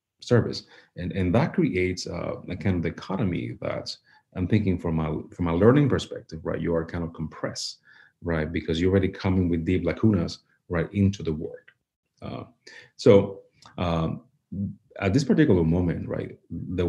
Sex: male